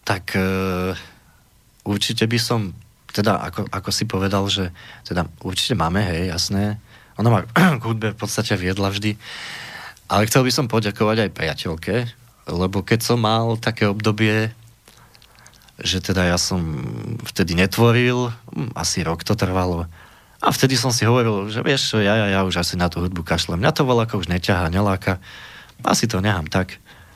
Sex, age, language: male, 20-39, Slovak